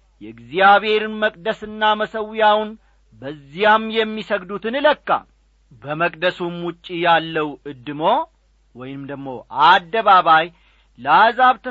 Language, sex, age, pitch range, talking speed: English, male, 50-69, 145-215 Hz, 110 wpm